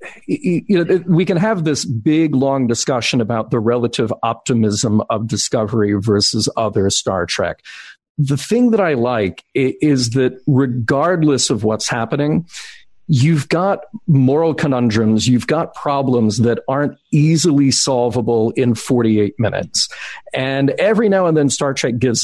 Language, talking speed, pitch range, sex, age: English, 135 wpm, 115-150 Hz, male, 50-69